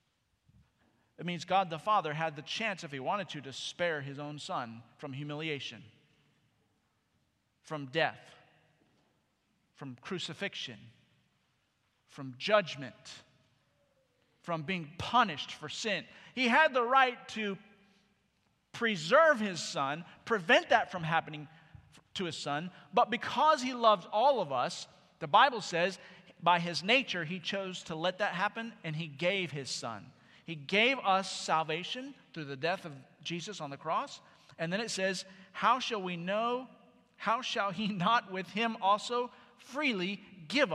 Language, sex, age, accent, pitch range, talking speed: English, male, 40-59, American, 155-230 Hz, 145 wpm